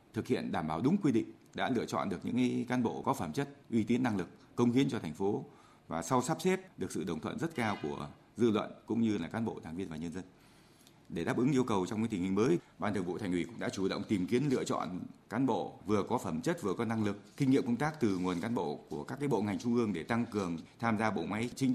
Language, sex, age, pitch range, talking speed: Vietnamese, male, 20-39, 95-125 Hz, 290 wpm